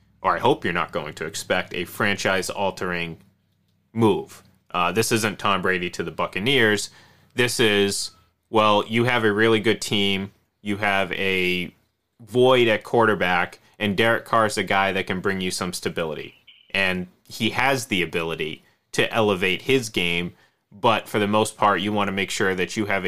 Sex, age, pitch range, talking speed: male, 30-49, 95-115 Hz, 175 wpm